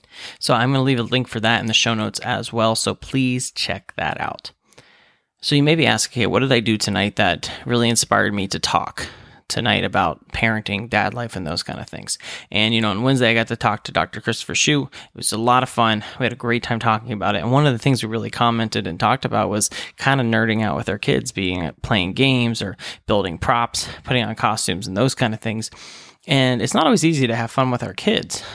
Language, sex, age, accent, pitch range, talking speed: English, male, 20-39, American, 110-125 Hz, 250 wpm